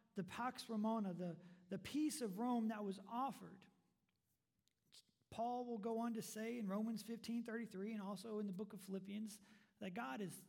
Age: 40-59